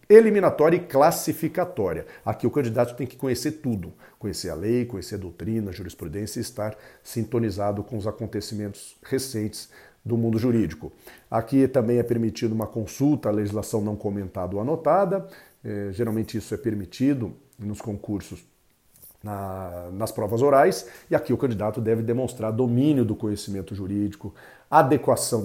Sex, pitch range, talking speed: male, 105-130 Hz, 140 wpm